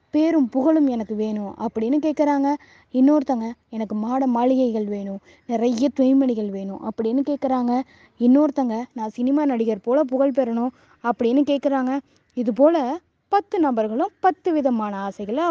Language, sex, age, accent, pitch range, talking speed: Tamil, female, 20-39, native, 245-315 Hz, 125 wpm